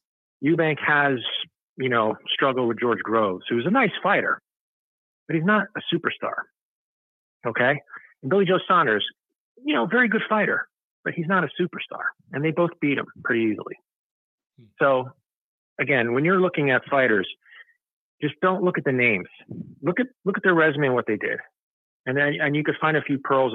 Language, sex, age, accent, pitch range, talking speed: English, male, 40-59, American, 120-160 Hz, 180 wpm